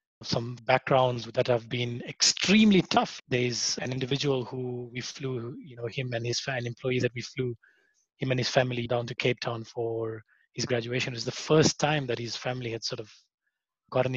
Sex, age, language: male, 20-39, English